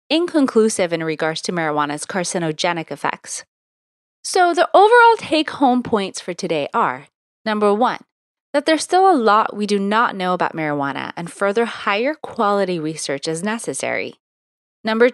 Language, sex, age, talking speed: English, female, 30-49, 145 wpm